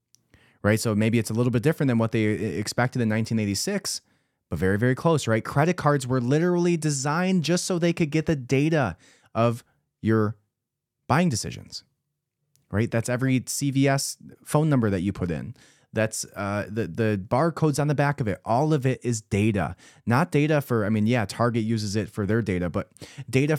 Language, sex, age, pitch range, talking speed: English, male, 30-49, 105-140 Hz, 190 wpm